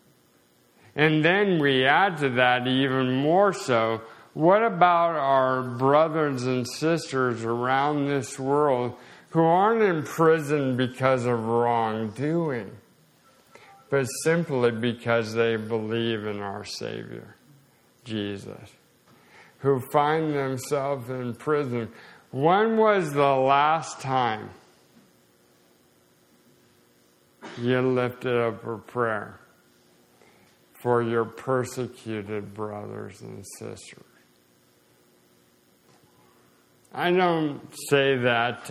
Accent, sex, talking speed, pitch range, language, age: American, male, 90 wpm, 115-160 Hz, English, 50-69